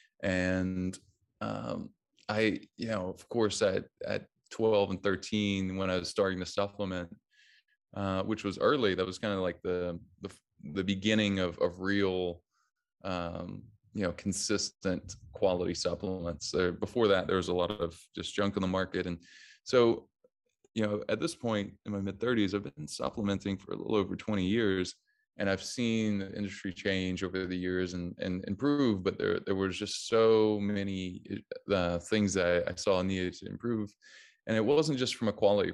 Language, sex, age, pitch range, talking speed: English, male, 20-39, 90-105 Hz, 180 wpm